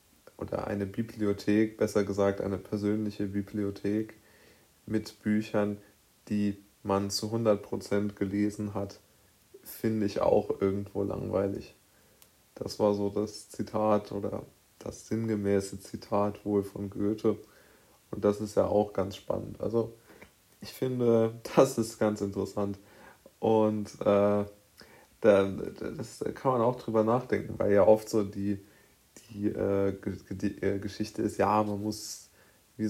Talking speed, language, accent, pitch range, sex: 130 wpm, German, German, 100-110 Hz, male